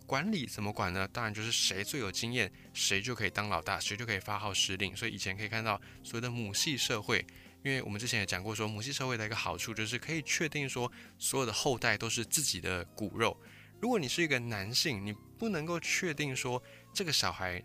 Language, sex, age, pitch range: Chinese, male, 20-39, 100-130 Hz